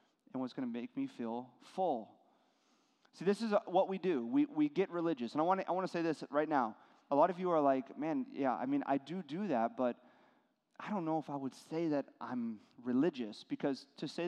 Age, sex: 30-49, male